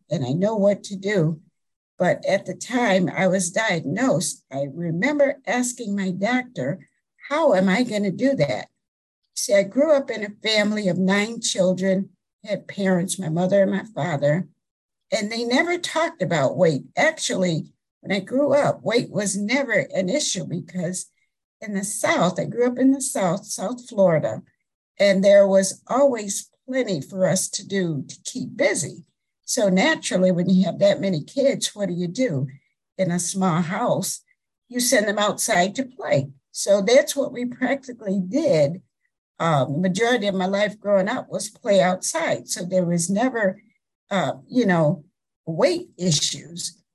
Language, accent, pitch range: English, American, 185-250 Hz